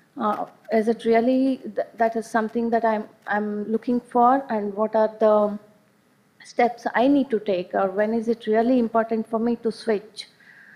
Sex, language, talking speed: female, English, 180 wpm